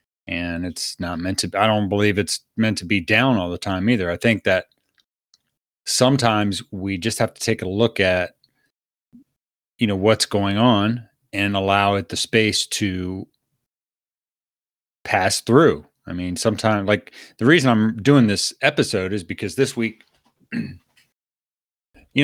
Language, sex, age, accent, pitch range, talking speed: English, male, 30-49, American, 95-115 Hz, 155 wpm